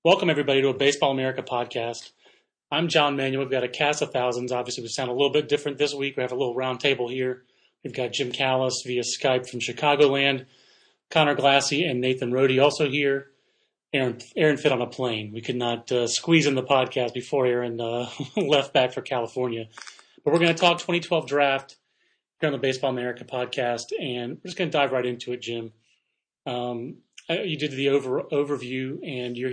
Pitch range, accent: 125-145 Hz, American